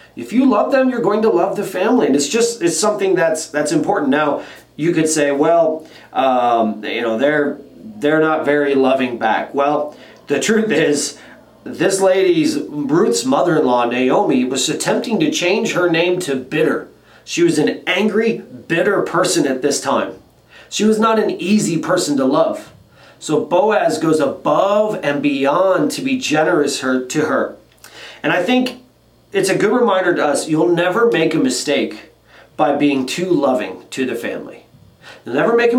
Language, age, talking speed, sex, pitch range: English, 30-49, 175 wpm, male, 145-210 Hz